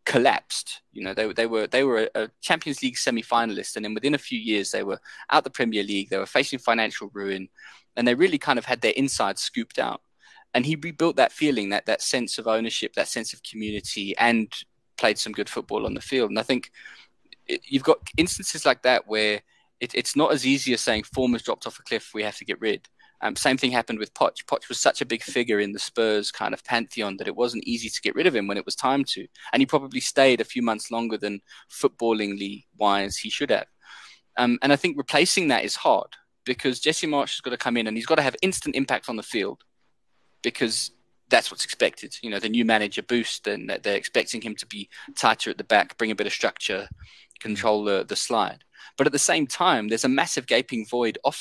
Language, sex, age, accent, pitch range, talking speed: English, male, 20-39, British, 105-135 Hz, 235 wpm